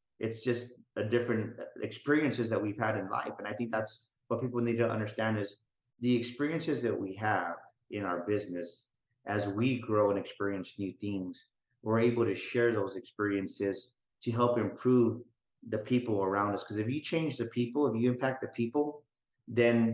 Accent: American